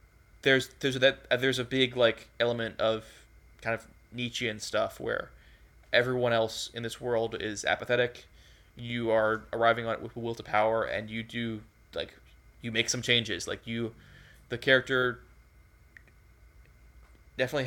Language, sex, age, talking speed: English, male, 20-39, 150 wpm